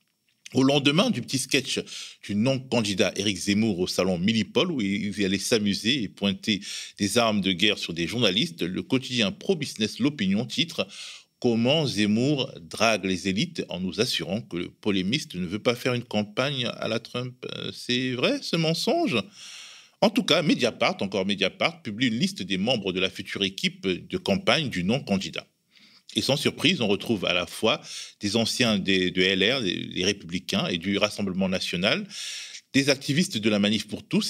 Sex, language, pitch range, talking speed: male, French, 100-130 Hz, 180 wpm